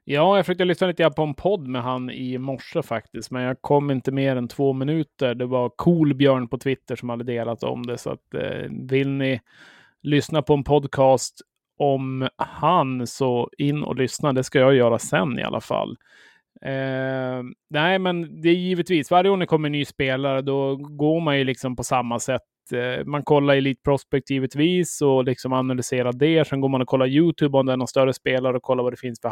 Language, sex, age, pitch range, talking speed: Swedish, male, 30-49, 125-150 Hz, 210 wpm